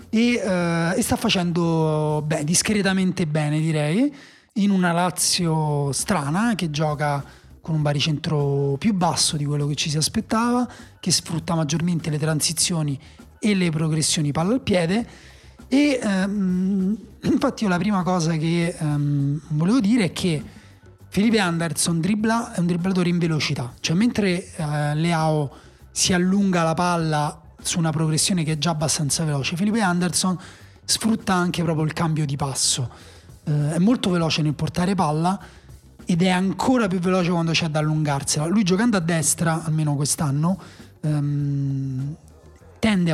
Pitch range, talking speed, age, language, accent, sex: 150-190 Hz, 145 wpm, 30-49, Italian, native, male